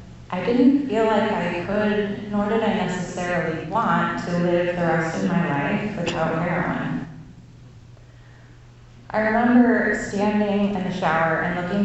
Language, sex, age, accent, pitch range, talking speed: English, female, 20-39, American, 160-210 Hz, 140 wpm